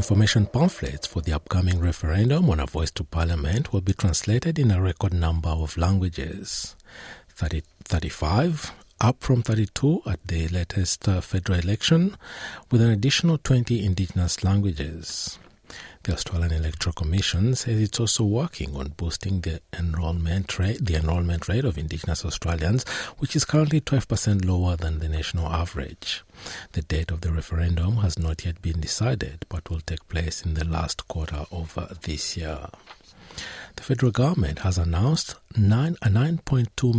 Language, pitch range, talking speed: English, 85-110 Hz, 145 wpm